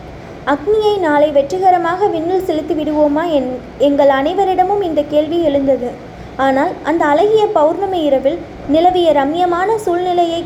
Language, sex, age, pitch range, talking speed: Tamil, female, 20-39, 290-360 Hz, 115 wpm